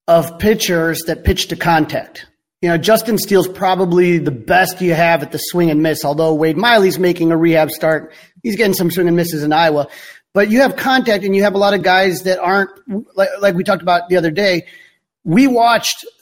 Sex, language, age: male, English, 40-59